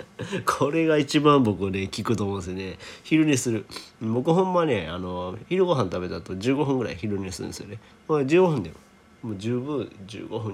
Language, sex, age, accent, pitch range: Japanese, male, 40-59, native, 95-135 Hz